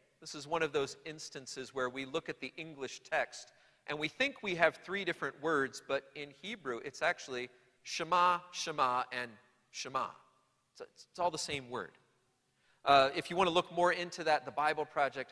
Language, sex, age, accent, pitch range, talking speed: English, male, 40-59, American, 125-170 Hz, 185 wpm